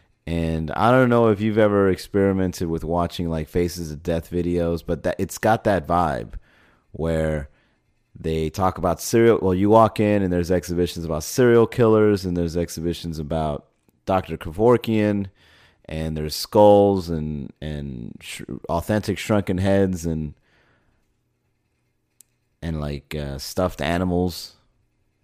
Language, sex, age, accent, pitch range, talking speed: English, male, 30-49, American, 80-105 Hz, 130 wpm